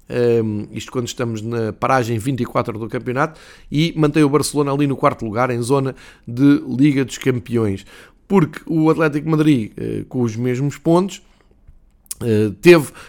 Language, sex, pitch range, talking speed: Portuguese, male, 115-145 Hz, 145 wpm